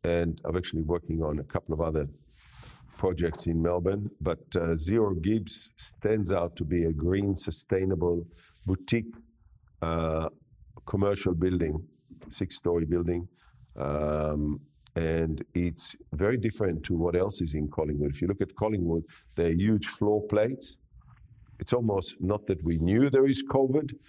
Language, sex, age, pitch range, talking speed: English, male, 50-69, 80-95 Hz, 145 wpm